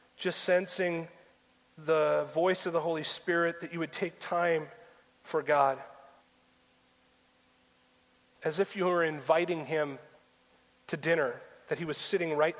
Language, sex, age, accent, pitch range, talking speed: English, male, 40-59, American, 145-180 Hz, 135 wpm